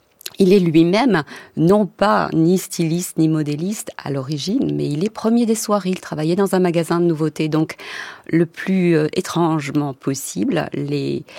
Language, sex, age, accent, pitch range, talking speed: French, female, 40-59, French, 135-175 Hz, 160 wpm